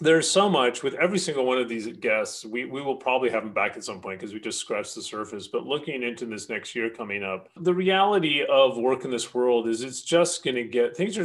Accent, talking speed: American, 255 wpm